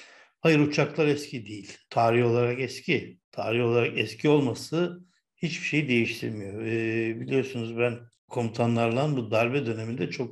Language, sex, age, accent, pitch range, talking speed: Turkish, male, 60-79, native, 115-135 Hz, 120 wpm